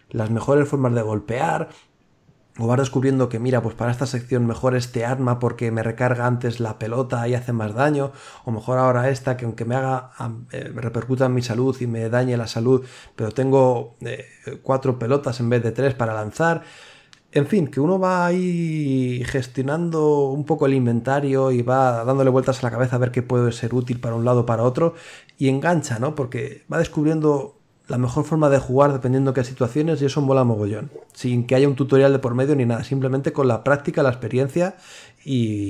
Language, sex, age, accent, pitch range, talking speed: Spanish, male, 30-49, Spanish, 115-140 Hz, 200 wpm